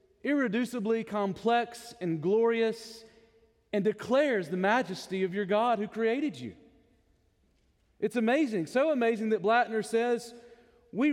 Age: 40-59